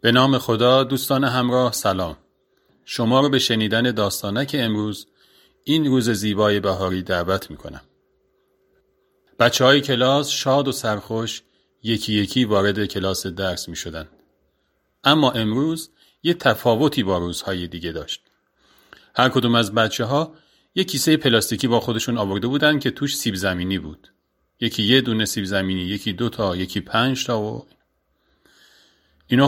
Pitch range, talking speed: 95-135 Hz, 140 wpm